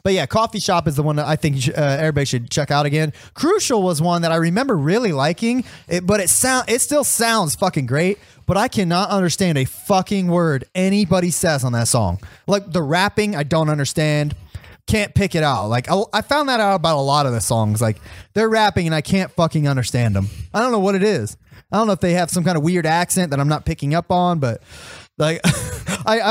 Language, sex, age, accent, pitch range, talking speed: English, male, 20-39, American, 140-200 Hz, 230 wpm